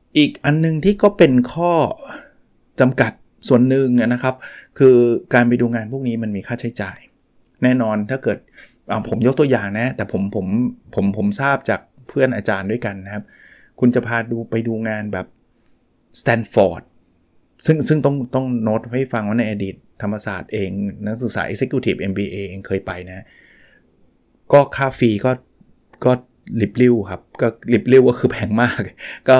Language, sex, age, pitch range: Thai, male, 20-39, 105-130 Hz